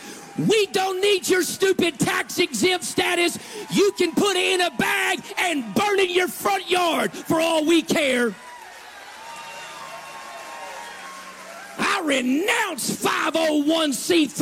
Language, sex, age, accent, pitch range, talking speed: English, male, 40-59, American, 260-345 Hz, 115 wpm